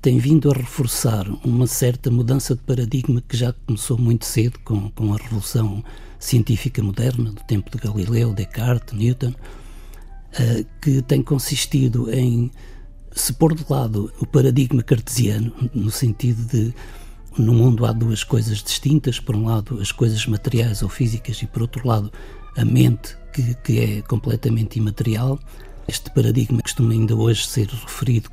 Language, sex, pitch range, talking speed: Portuguese, male, 110-135 Hz, 155 wpm